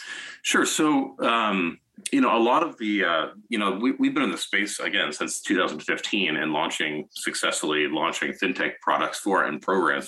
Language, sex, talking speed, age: English, male, 180 wpm, 30-49